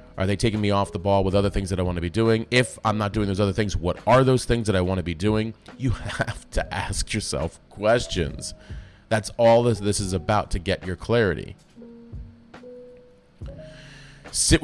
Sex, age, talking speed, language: male, 30-49, 205 wpm, English